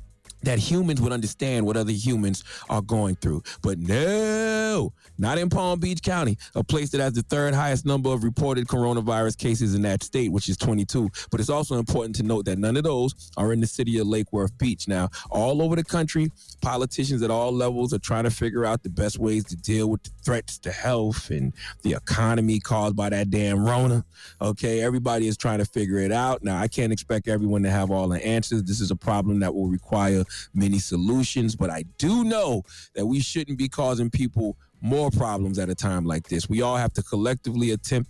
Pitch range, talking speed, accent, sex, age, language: 100-125 Hz, 215 wpm, American, male, 30-49, English